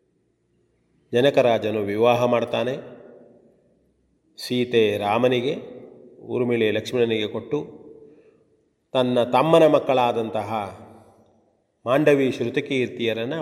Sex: male